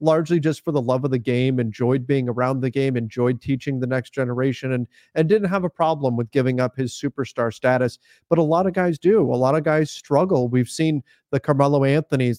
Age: 30-49